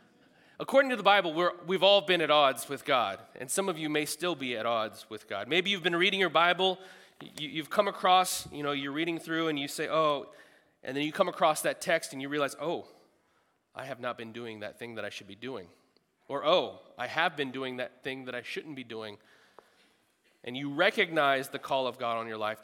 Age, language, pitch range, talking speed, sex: 30-49, English, 130-185 Hz, 230 wpm, male